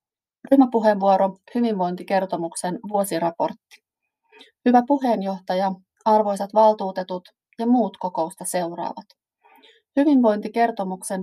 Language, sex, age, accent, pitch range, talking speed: Finnish, female, 30-49, native, 185-220 Hz, 65 wpm